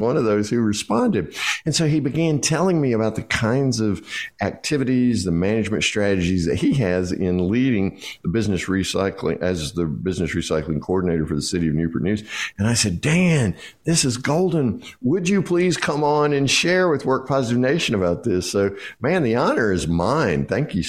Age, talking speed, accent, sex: 50-69, 190 wpm, American, male